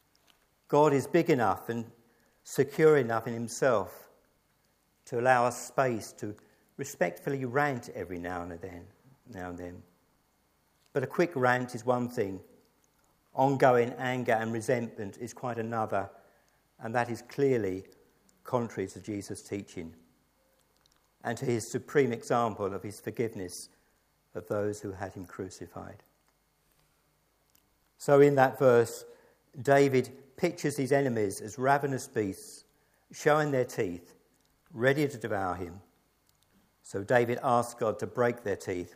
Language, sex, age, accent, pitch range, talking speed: English, male, 50-69, British, 100-135 Hz, 130 wpm